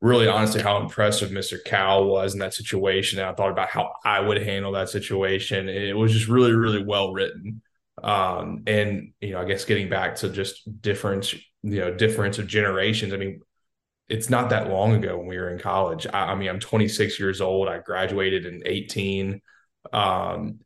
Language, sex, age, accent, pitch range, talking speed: English, male, 20-39, American, 95-105 Hz, 190 wpm